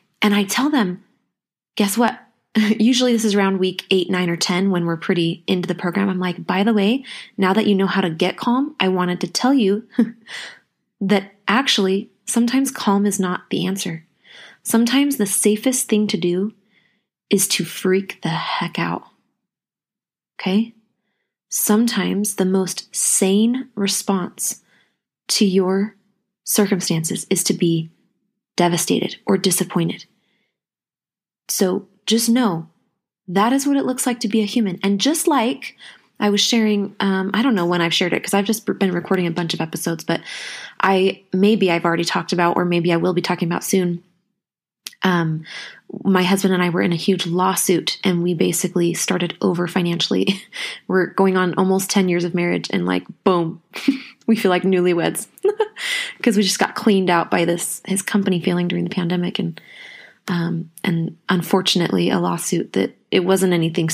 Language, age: English, 20-39